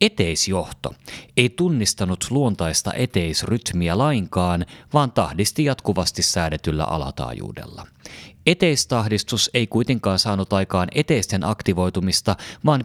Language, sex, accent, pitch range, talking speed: Finnish, male, native, 90-125 Hz, 90 wpm